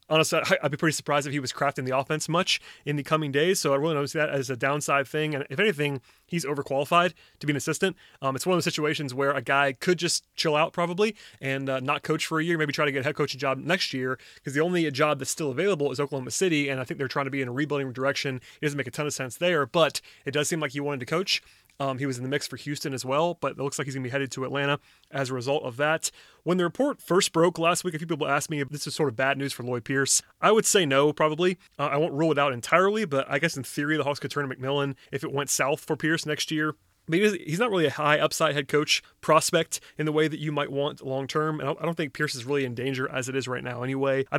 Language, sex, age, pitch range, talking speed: English, male, 30-49, 135-155 Hz, 295 wpm